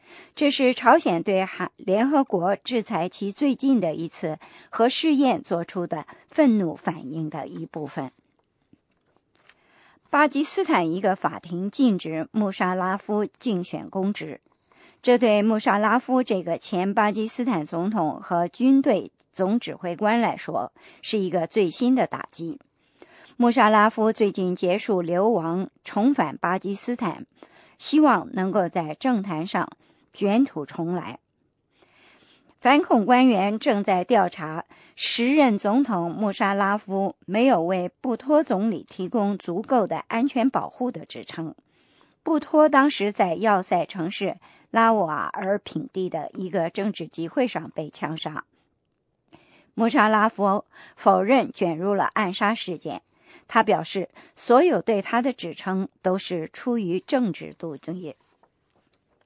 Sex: male